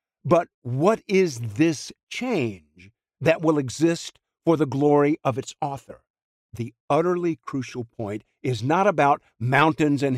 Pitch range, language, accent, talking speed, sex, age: 115-160 Hz, Spanish, American, 135 wpm, male, 50-69